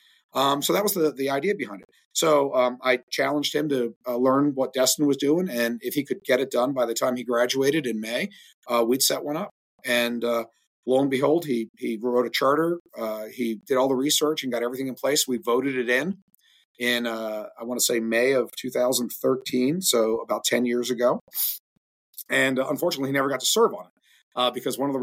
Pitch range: 120-135 Hz